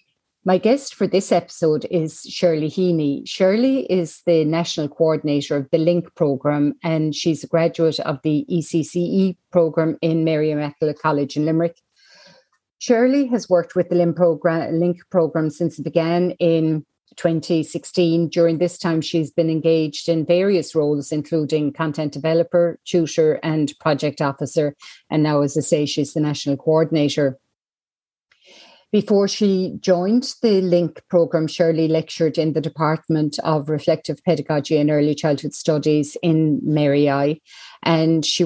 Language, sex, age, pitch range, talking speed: English, female, 50-69, 150-175 Hz, 140 wpm